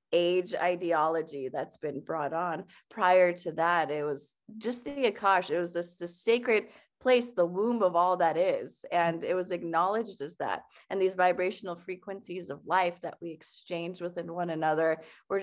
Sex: female